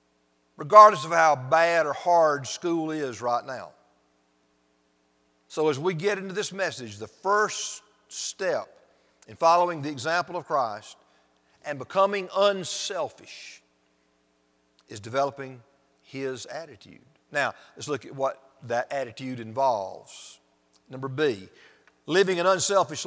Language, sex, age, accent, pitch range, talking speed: English, male, 50-69, American, 105-175 Hz, 120 wpm